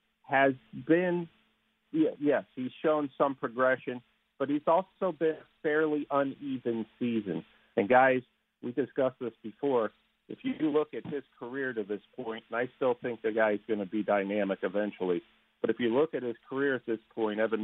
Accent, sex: American, male